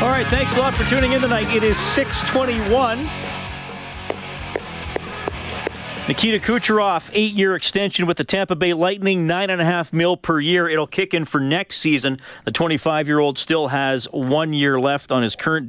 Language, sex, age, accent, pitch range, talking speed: English, male, 40-59, American, 135-180 Hz, 185 wpm